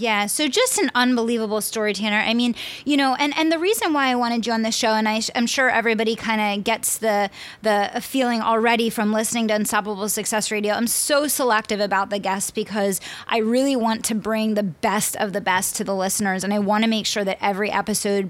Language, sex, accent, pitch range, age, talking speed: English, female, American, 210-235 Hz, 20-39, 230 wpm